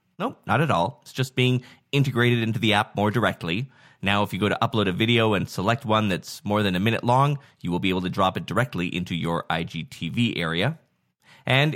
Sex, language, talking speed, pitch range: male, English, 220 wpm, 105-140 Hz